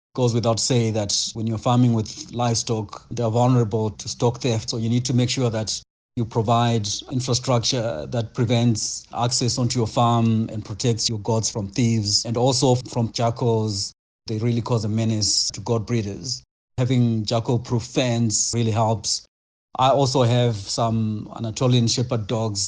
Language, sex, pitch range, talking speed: English, male, 110-125 Hz, 165 wpm